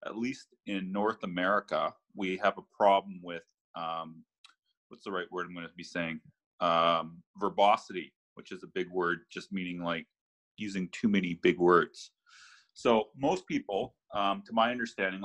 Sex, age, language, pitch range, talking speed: male, 30-49, English, 85-115 Hz, 165 wpm